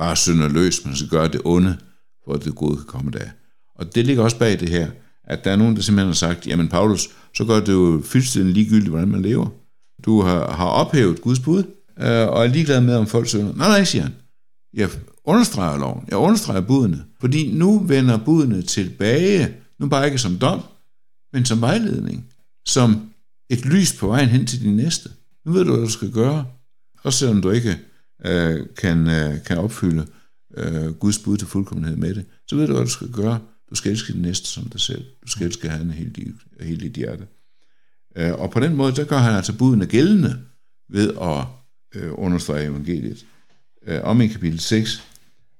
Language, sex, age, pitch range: Danish, male, 60-79, 85-125 Hz